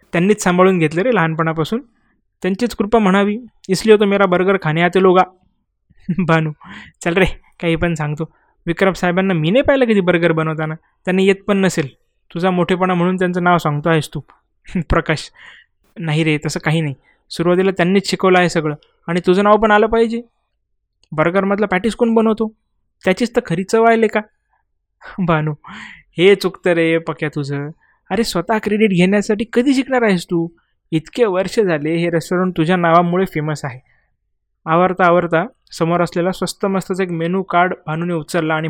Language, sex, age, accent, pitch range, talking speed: Marathi, male, 20-39, native, 165-195 Hz, 145 wpm